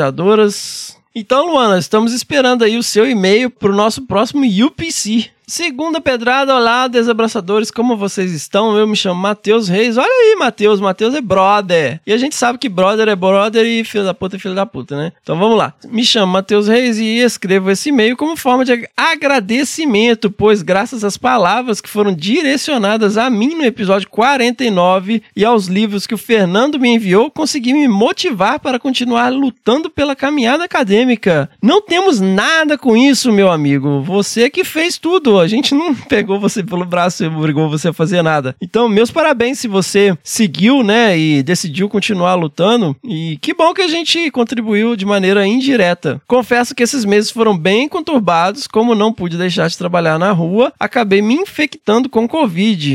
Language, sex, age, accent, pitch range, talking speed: Portuguese, male, 20-39, Brazilian, 195-255 Hz, 180 wpm